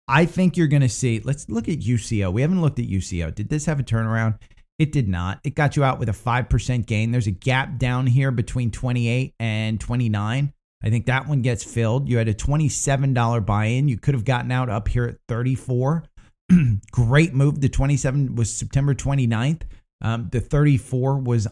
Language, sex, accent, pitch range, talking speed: English, male, American, 110-140 Hz, 200 wpm